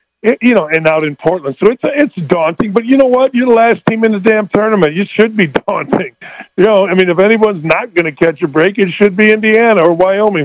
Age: 50-69